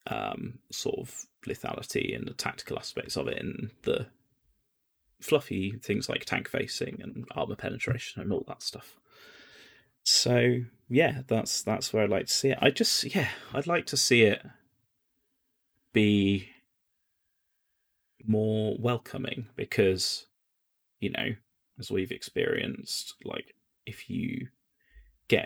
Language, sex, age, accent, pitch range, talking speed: English, male, 20-39, British, 100-130 Hz, 130 wpm